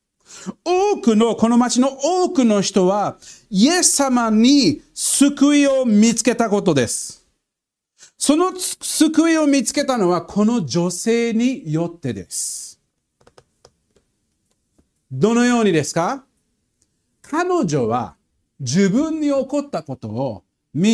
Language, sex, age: Japanese, male, 50-69